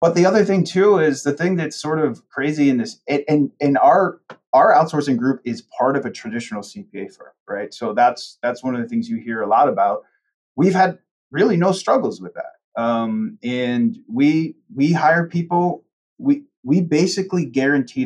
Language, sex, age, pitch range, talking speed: English, male, 30-49, 120-165 Hz, 190 wpm